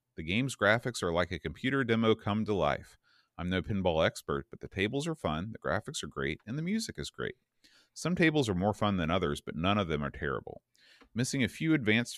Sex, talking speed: male, 225 wpm